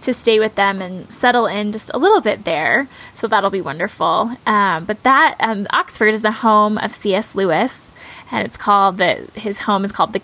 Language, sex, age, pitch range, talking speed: English, female, 10-29, 195-235 Hz, 210 wpm